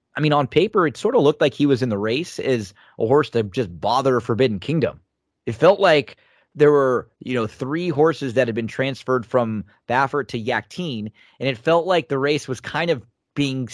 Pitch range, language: 115-140 Hz, English